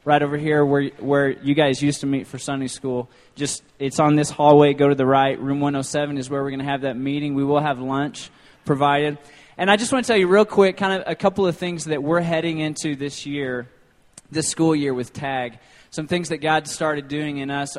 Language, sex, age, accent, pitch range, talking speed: English, male, 20-39, American, 135-160 Hz, 240 wpm